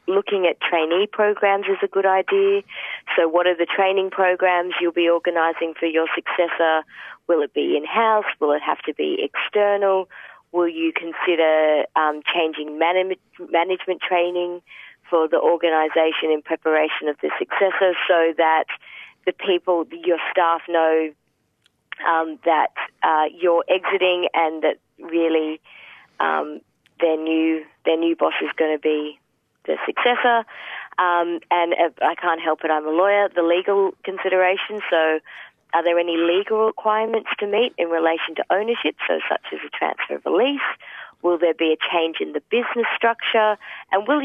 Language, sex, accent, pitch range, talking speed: English, female, Australian, 160-195 Hz, 155 wpm